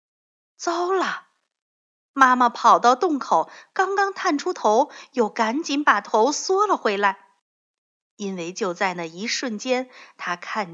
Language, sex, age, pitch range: Chinese, female, 50-69, 185-280 Hz